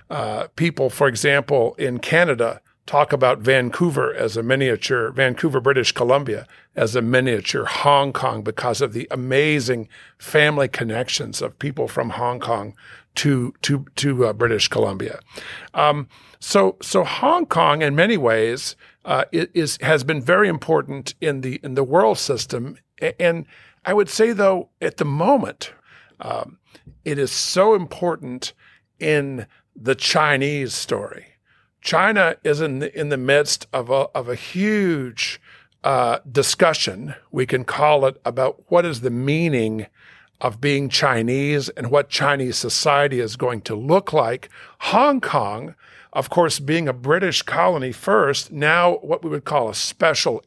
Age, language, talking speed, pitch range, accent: 50-69, English, 150 wpm, 125-160 Hz, American